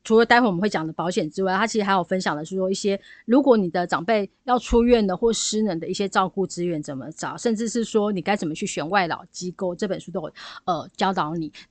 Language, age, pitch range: Chinese, 30-49, 180-225 Hz